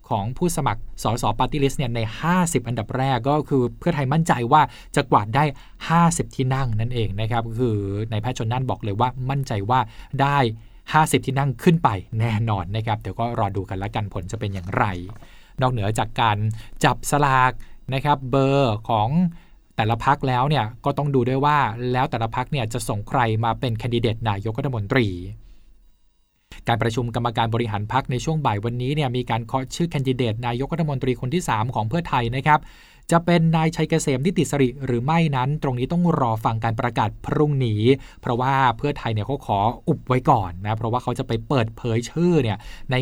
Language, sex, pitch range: Thai, male, 110-140 Hz